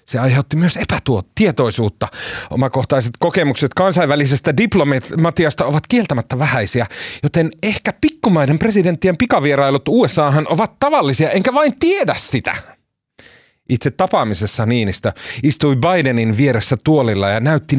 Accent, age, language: native, 30-49, Finnish